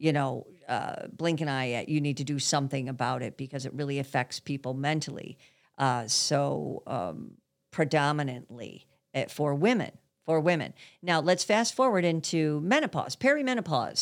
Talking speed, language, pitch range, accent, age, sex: 145 wpm, English, 145-190 Hz, American, 50-69, female